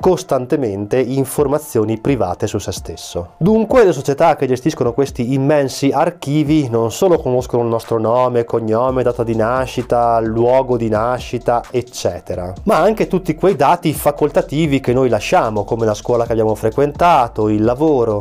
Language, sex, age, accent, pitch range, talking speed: Italian, male, 20-39, native, 115-150 Hz, 150 wpm